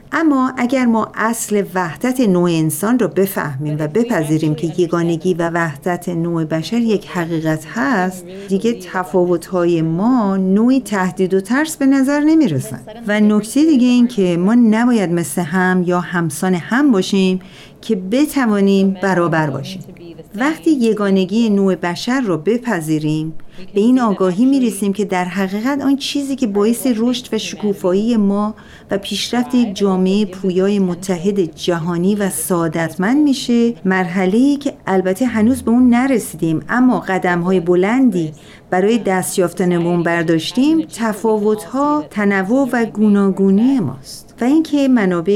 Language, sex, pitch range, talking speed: Persian, female, 170-225 Hz, 135 wpm